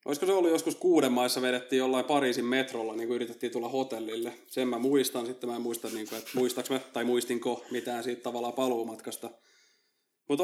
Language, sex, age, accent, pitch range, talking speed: Finnish, male, 20-39, native, 120-145 Hz, 180 wpm